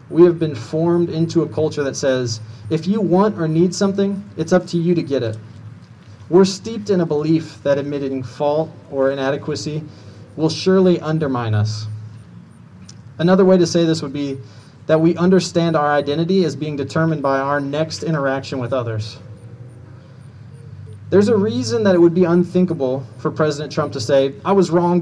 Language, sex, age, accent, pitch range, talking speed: English, male, 30-49, American, 125-160 Hz, 175 wpm